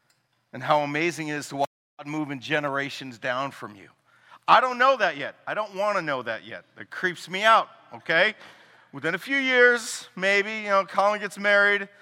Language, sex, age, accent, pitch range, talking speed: English, male, 40-59, American, 150-200 Hz, 205 wpm